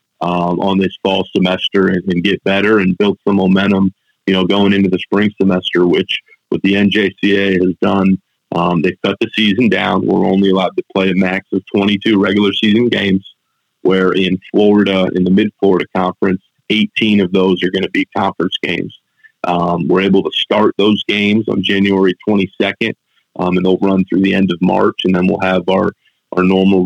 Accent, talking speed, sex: American, 195 wpm, male